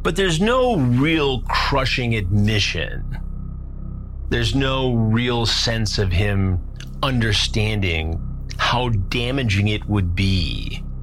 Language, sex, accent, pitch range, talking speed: English, male, American, 80-120 Hz, 100 wpm